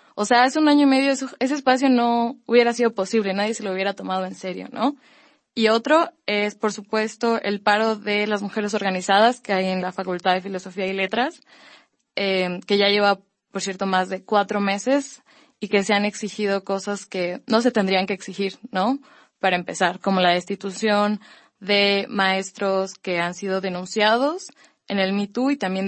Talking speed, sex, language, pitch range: 185 wpm, female, Spanish, 190-235 Hz